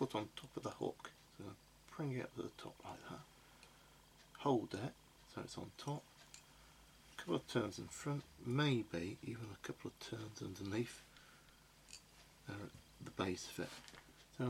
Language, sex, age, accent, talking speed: English, male, 40-59, British, 175 wpm